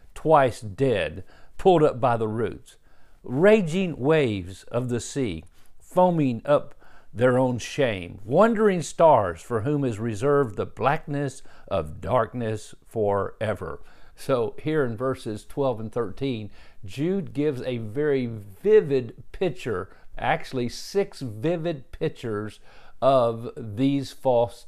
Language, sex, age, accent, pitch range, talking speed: English, male, 50-69, American, 110-145 Hz, 115 wpm